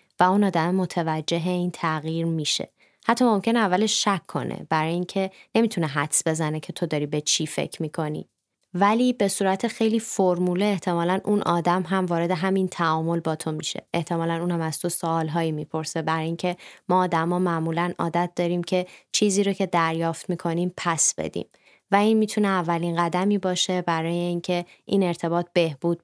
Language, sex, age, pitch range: Persian, female, 20-39, 170-200 Hz